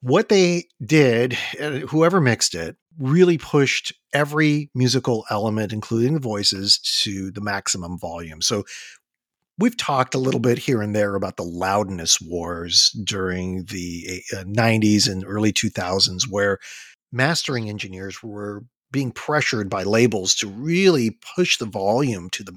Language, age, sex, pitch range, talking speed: English, 40-59, male, 105-150 Hz, 140 wpm